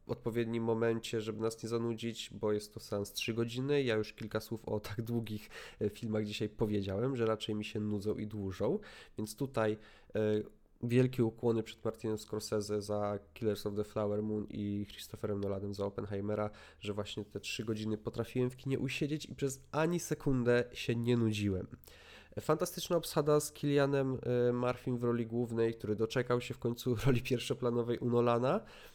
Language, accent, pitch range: Polish, native, 110-140 Hz